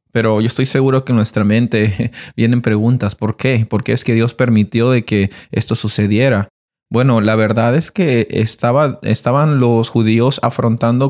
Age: 30-49